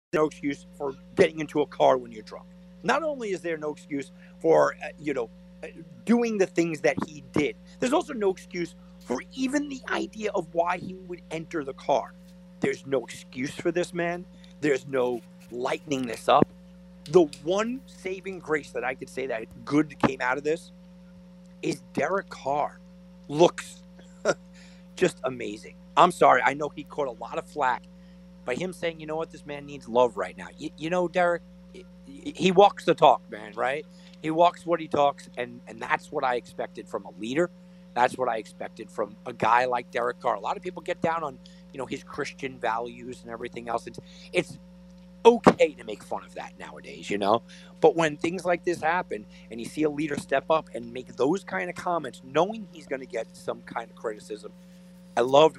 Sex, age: male, 50-69